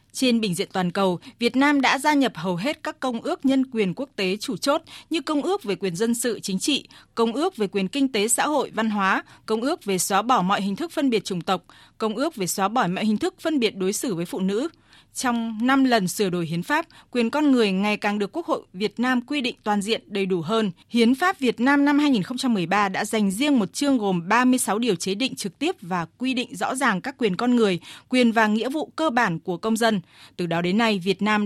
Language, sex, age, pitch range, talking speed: Vietnamese, female, 20-39, 195-260 Hz, 255 wpm